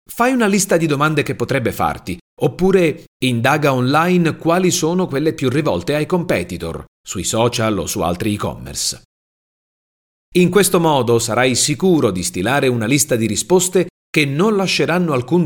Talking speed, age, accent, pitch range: 150 wpm, 40-59, native, 110-175 Hz